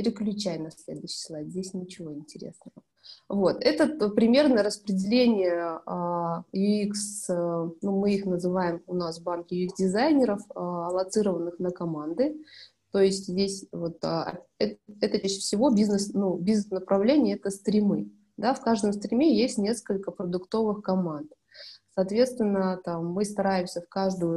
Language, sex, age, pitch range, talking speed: Russian, female, 20-39, 175-215 Hz, 120 wpm